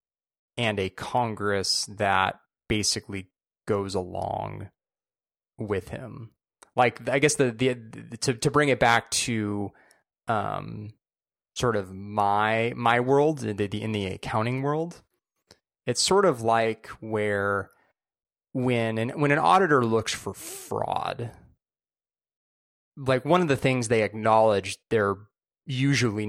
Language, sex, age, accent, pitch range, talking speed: English, male, 20-39, American, 100-125 Hz, 130 wpm